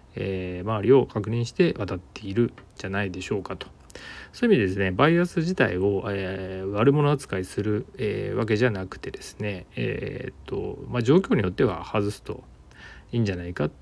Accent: native